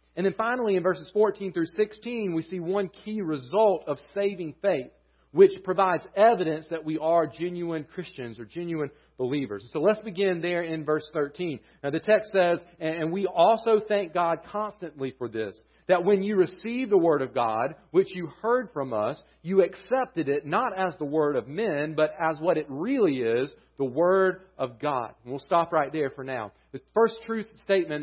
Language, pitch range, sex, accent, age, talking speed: English, 145-195 Hz, male, American, 40-59, 195 wpm